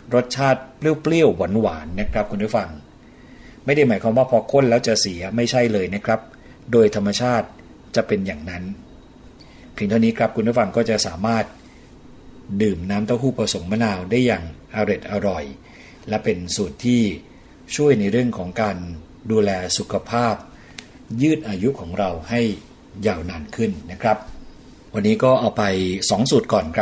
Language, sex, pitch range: Thai, male, 100-125 Hz